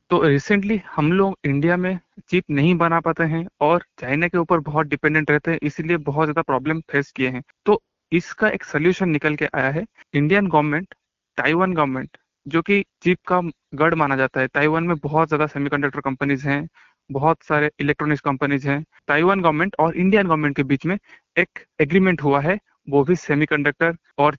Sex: male